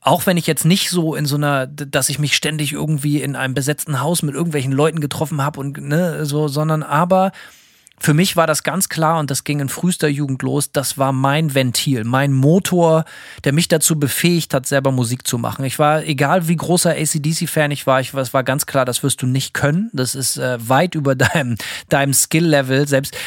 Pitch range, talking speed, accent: 130-160 Hz, 220 wpm, German